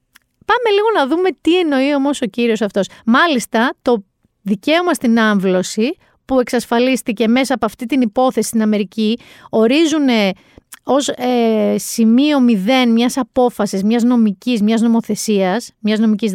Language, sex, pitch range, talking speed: Greek, female, 210-315 Hz, 135 wpm